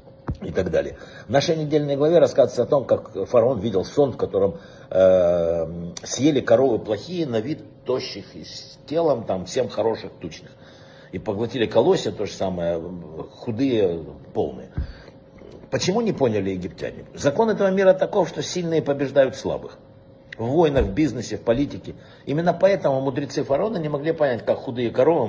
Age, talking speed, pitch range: 60-79, 155 wpm, 110-145 Hz